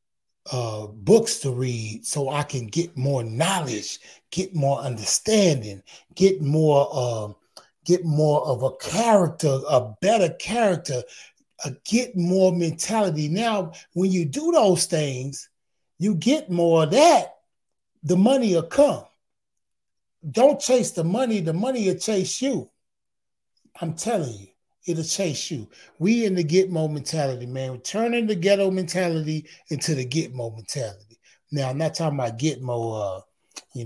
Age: 30-49